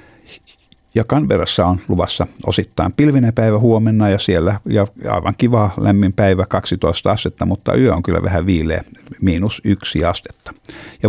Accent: native